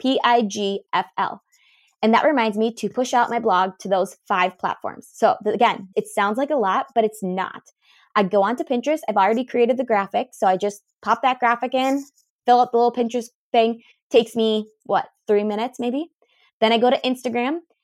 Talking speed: 190 wpm